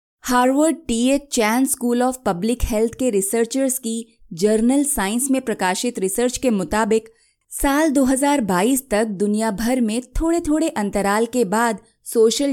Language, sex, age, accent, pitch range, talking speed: Hindi, female, 20-39, native, 195-260 Hz, 140 wpm